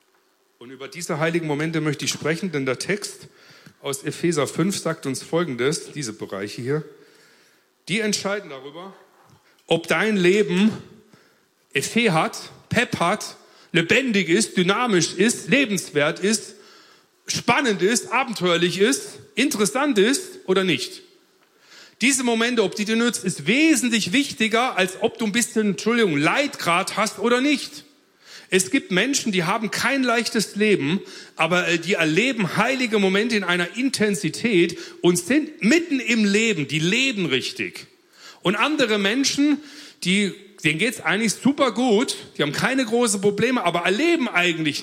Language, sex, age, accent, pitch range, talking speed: German, male, 40-59, German, 170-235 Hz, 140 wpm